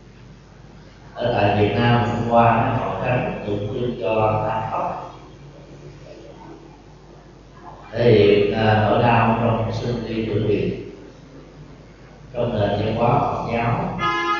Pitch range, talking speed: 110-140 Hz, 115 wpm